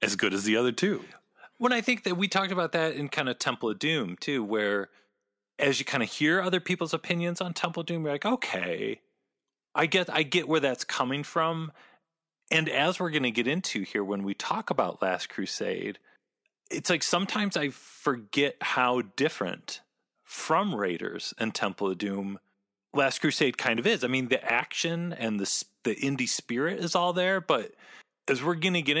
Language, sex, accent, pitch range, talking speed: English, male, American, 115-175 Hz, 195 wpm